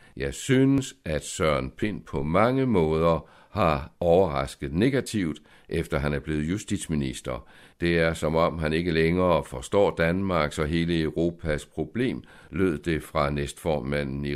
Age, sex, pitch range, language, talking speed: 60-79, male, 70-95 Hz, Danish, 140 wpm